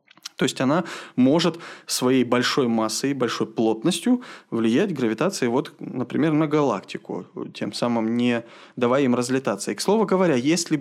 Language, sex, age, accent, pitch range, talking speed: Russian, male, 20-39, native, 115-155 Hz, 140 wpm